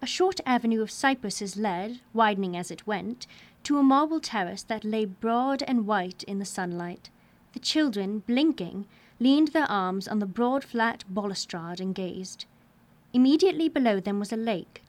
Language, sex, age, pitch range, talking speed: English, female, 30-49, 205-260 Hz, 160 wpm